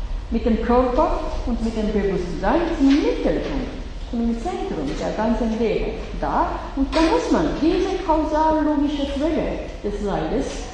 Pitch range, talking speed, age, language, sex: 220-300 Hz, 135 wpm, 50-69, English, female